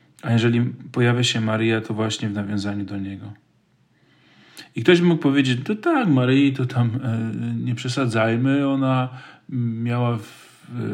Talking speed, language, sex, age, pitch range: 150 wpm, Polish, male, 40-59, 110-130 Hz